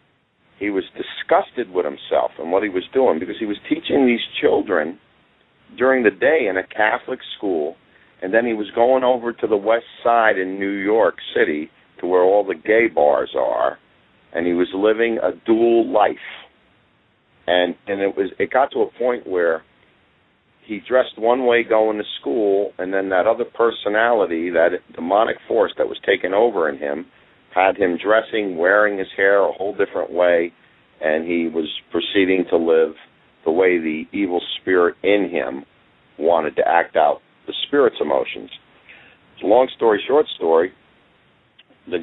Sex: male